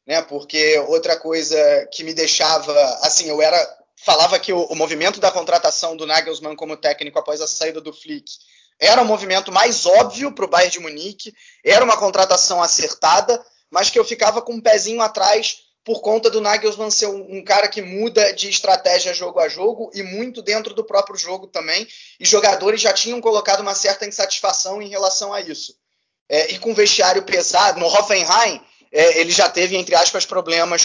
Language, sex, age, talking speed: Portuguese, male, 20-39, 185 wpm